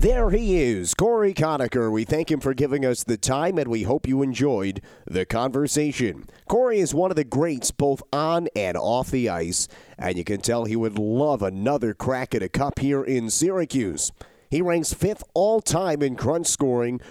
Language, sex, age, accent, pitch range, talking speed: English, male, 40-59, American, 115-155 Hz, 190 wpm